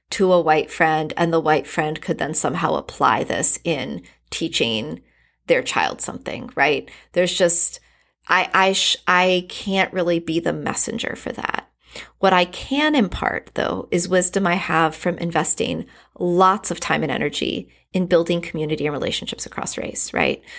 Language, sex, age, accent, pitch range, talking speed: English, female, 30-49, American, 165-200 Hz, 165 wpm